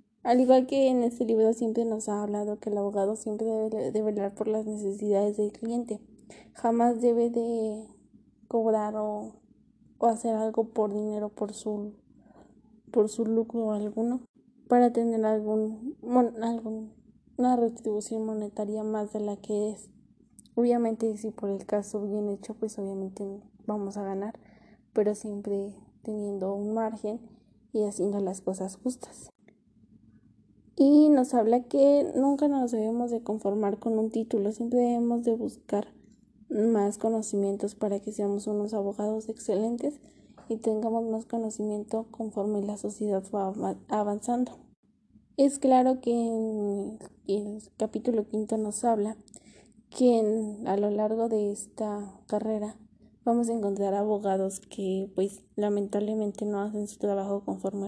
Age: 10-29